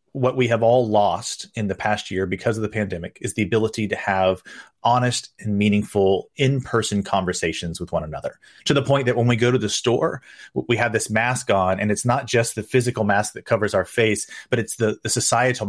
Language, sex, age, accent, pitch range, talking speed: English, male, 30-49, American, 105-130 Hz, 220 wpm